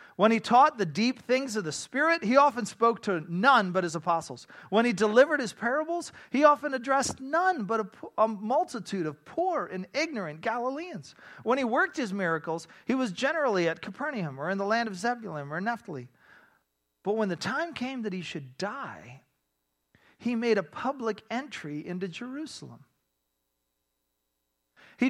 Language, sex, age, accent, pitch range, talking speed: English, male, 40-59, American, 185-280 Hz, 165 wpm